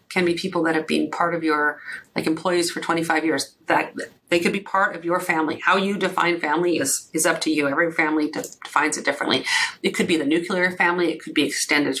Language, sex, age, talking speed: English, female, 40-59, 230 wpm